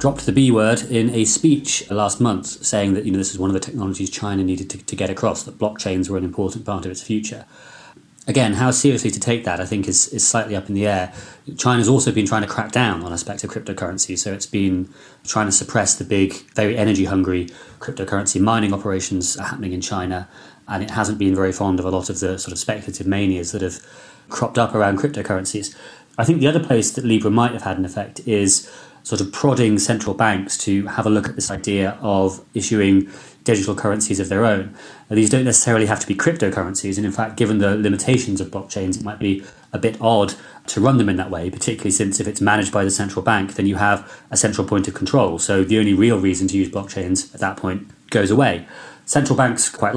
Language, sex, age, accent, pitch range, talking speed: English, male, 30-49, British, 95-110 Hz, 230 wpm